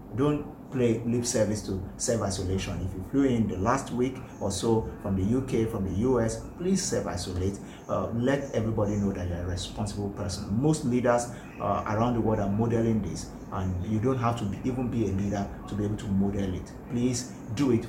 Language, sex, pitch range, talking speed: English, male, 100-120 Hz, 195 wpm